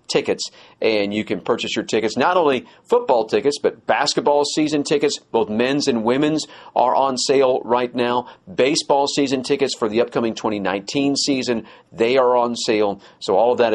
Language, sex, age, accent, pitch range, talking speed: English, male, 50-69, American, 110-155 Hz, 175 wpm